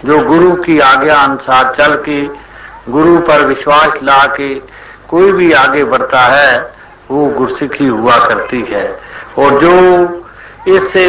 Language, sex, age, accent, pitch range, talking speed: Hindi, male, 60-79, native, 140-175 Hz, 135 wpm